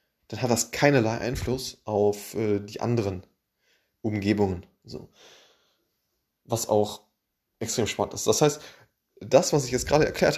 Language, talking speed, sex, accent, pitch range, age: German, 135 wpm, male, German, 100-120 Hz, 20-39